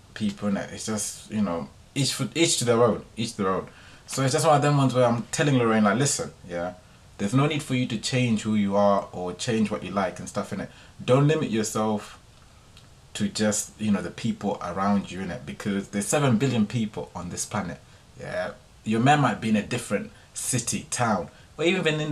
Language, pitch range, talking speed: English, 105-125 Hz, 225 wpm